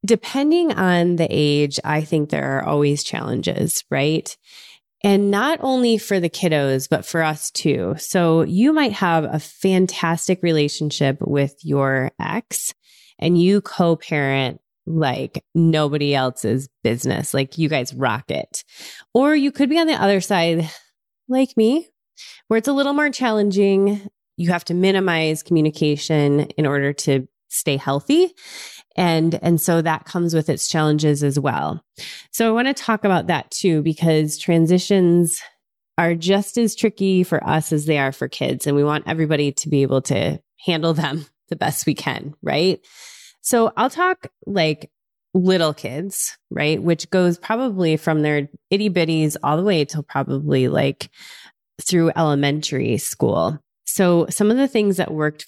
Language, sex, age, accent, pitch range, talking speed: English, female, 20-39, American, 150-200 Hz, 155 wpm